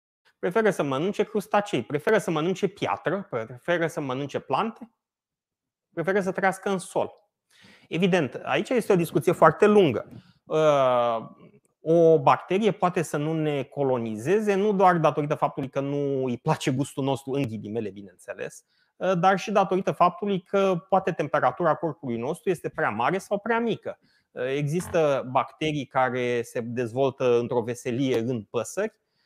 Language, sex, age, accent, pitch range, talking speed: Romanian, male, 30-49, native, 140-195 Hz, 140 wpm